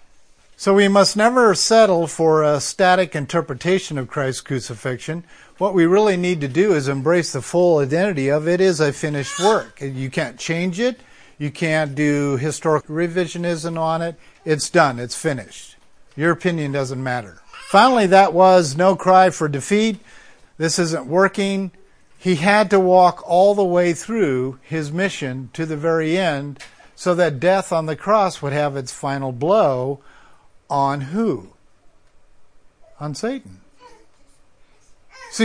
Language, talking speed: English, 150 wpm